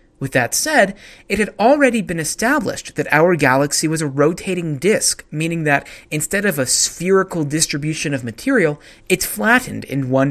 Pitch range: 135-185 Hz